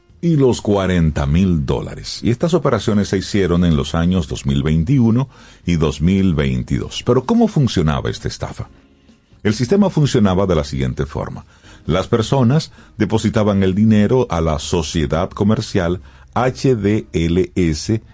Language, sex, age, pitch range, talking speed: Spanish, male, 50-69, 80-120 Hz, 125 wpm